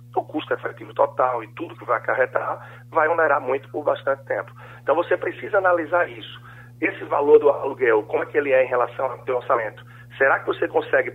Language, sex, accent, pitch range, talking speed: Portuguese, male, Brazilian, 120-175 Hz, 205 wpm